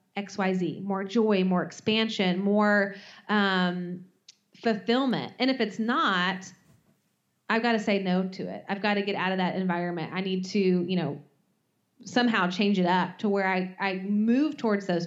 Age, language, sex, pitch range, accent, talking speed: 30-49, English, female, 185-230 Hz, American, 170 wpm